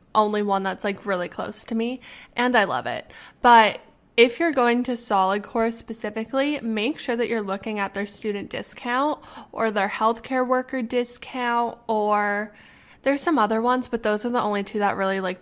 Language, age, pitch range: English, 10-29, 205-250 Hz